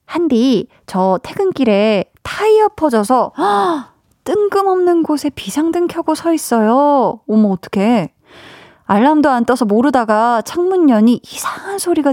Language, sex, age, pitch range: Korean, female, 20-39, 210-285 Hz